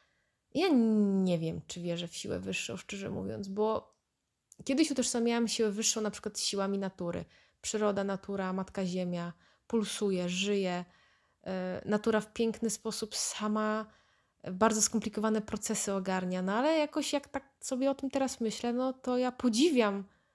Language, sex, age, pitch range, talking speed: Polish, female, 20-39, 195-230 Hz, 145 wpm